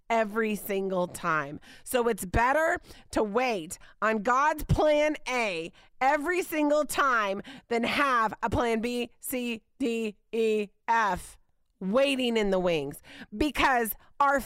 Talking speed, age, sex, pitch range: 125 wpm, 30-49, female, 210-335 Hz